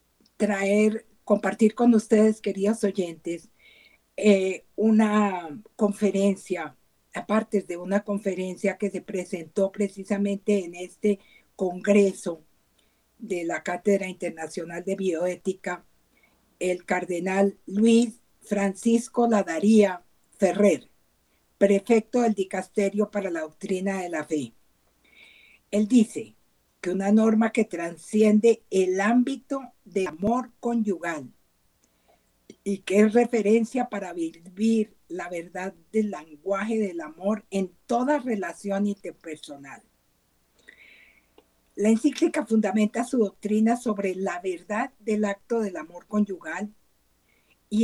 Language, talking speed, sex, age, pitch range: Spanish, 105 wpm, female, 50-69, 180-220 Hz